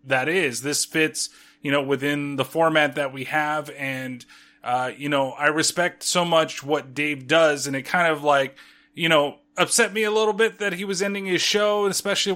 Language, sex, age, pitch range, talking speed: English, male, 30-49, 145-185 Hz, 210 wpm